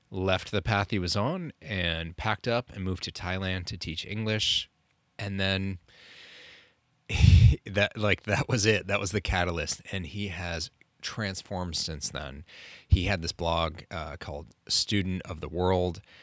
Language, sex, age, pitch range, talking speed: English, male, 30-49, 80-100 Hz, 165 wpm